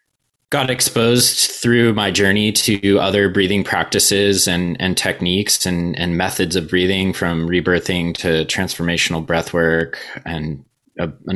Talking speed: 135 wpm